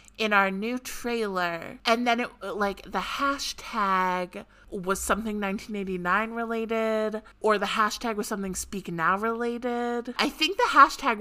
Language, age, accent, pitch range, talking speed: English, 20-39, American, 185-235 Hz, 140 wpm